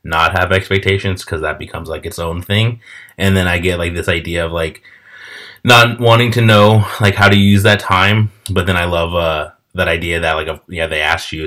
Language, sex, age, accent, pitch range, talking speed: English, male, 20-39, American, 80-95 Hz, 220 wpm